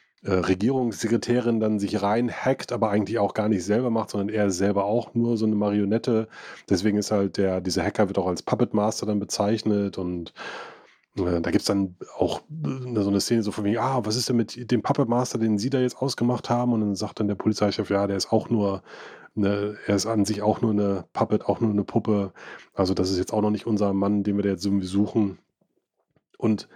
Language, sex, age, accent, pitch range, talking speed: German, male, 30-49, German, 100-120 Hz, 225 wpm